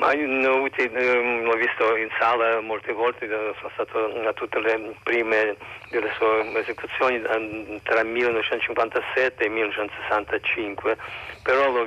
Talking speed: 115 wpm